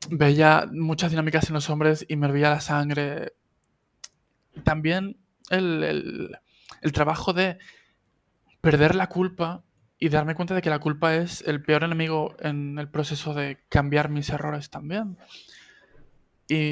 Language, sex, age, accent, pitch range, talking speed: Spanish, male, 20-39, Spanish, 145-160 Hz, 145 wpm